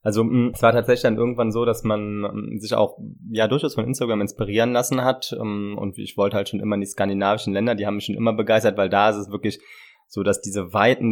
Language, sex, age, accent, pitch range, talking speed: German, male, 20-39, German, 105-120 Hz, 230 wpm